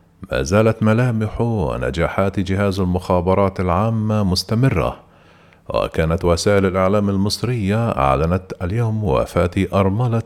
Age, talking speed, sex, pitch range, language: 50-69, 95 wpm, male, 90-110 Hz, Arabic